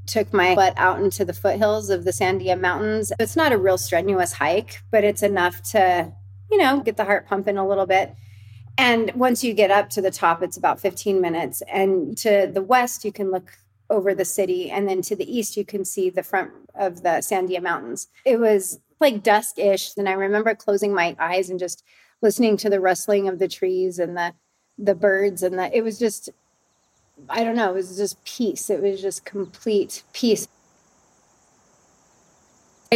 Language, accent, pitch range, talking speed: English, American, 180-210 Hz, 190 wpm